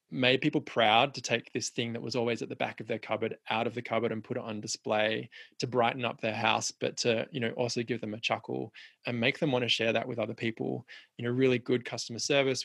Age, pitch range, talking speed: 20-39, 110-125 Hz, 260 wpm